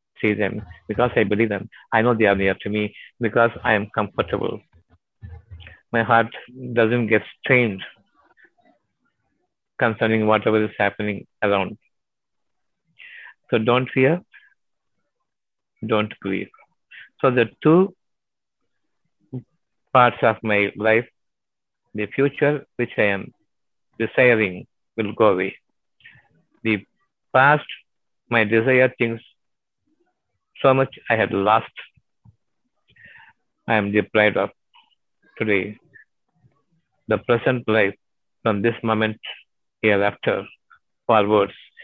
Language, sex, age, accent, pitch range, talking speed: Tamil, male, 50-69, native, 110-130 Hz, 105 wpm